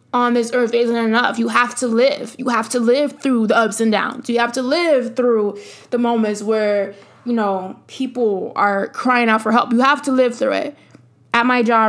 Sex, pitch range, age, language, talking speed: female, 225-255 Hz, 20-39, English, 215 wpm